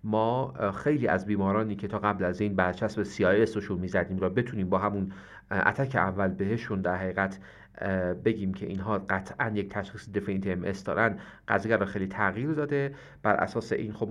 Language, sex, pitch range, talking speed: Persian, male, 95-110 Hz, 170 wpm